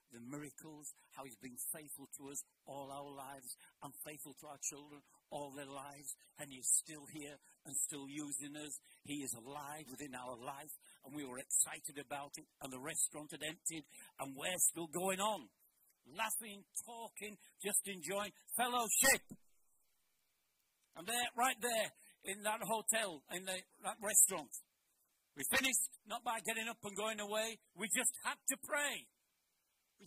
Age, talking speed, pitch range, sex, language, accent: 60-79, 160 wpm, 150-245 Hz, male, English, British